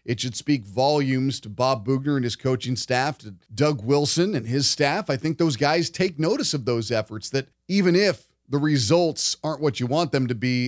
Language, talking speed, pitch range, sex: English, 215 wpm, 125-165 Hz, male